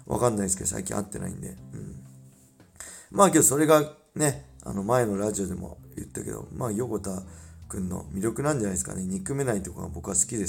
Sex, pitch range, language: male, 100-150 Hz, Japanese